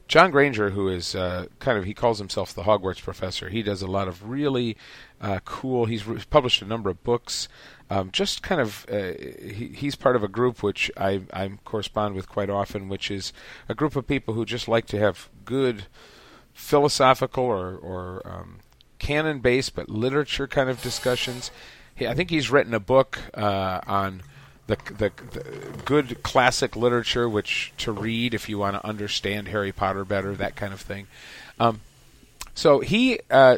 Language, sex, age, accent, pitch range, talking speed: English, male, 40-59, American, 100-130 Hz, 175 wpm